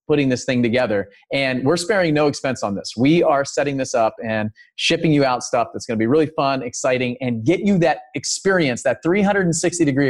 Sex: male